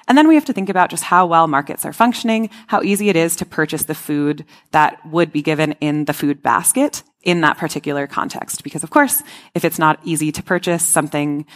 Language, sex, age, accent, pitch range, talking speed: English, female, 20-39, American, 155-210 Hz, 225 wpm